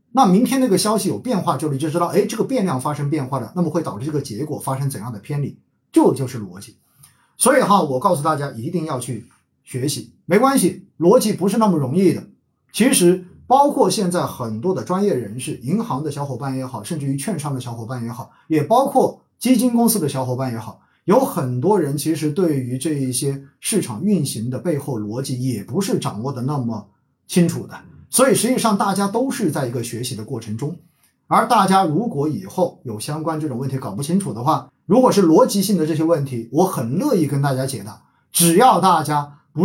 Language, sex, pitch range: Chinese, male, 130-185 Hz